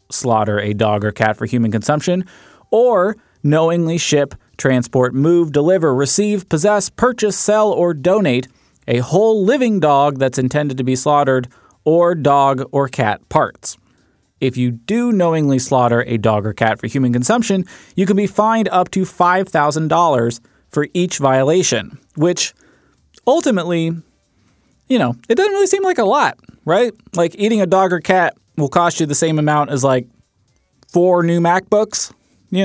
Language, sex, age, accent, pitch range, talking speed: English, male, 30-49, American, 125-180 Hz, 160 wpm